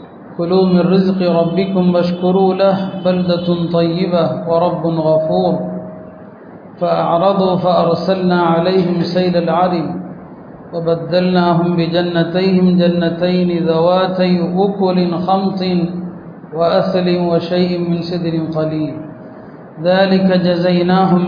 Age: 40-59